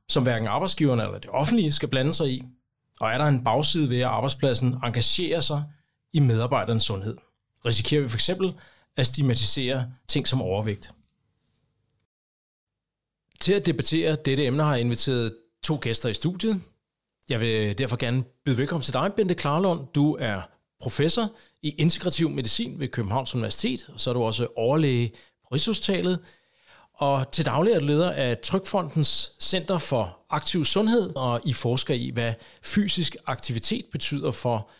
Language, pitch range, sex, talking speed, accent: English, 120-165 Hz, male, 155 wpm, Danish